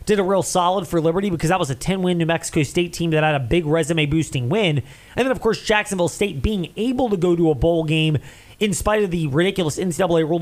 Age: 30-49